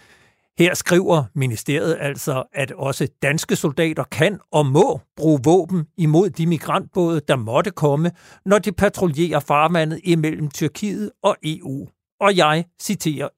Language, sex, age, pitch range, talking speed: Danish, male, 60-79, 140-185 Hz, 135 wpm